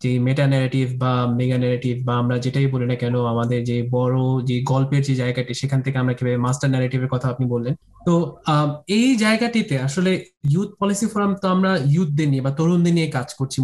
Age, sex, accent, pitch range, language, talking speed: 20-39, male, native, 145-190 Hz, Bengali, 70 wpm